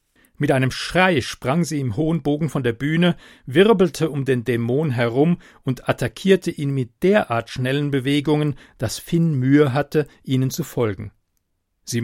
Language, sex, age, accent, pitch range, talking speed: German, male, 40-59, German, 120-155 Hz, 155 wpm